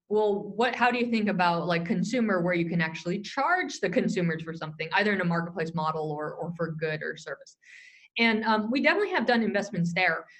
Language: English